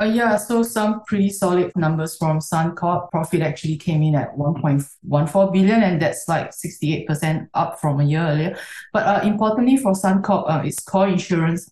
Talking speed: 170 wpm